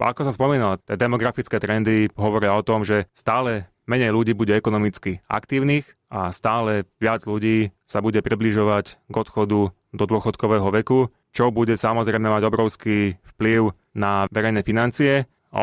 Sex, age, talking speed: male, 20-39, 150 wpm